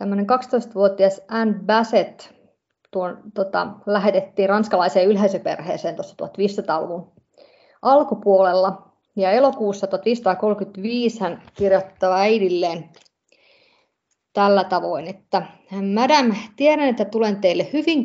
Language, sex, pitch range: Finnish, female, 190-245 Hz